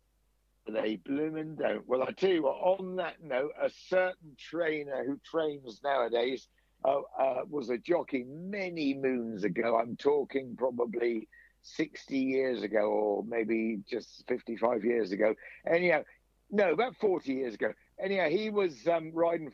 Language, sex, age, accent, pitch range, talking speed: English, male, 60-79, British, 125-165 Hz, 150 wpm